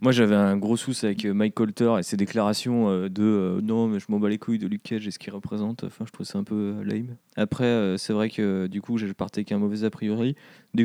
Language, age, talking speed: French, 20-39, 275 wpm